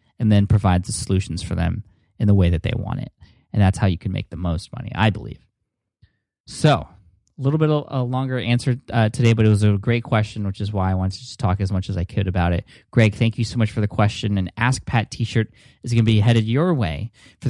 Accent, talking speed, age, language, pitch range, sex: American, 260 wpm, 20-39, English, 100-120 Hz, male